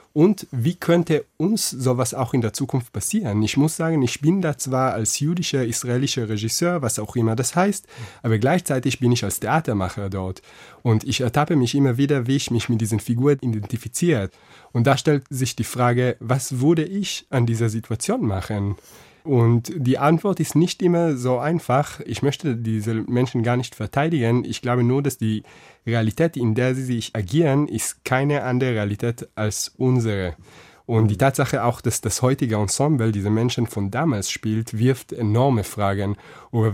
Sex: male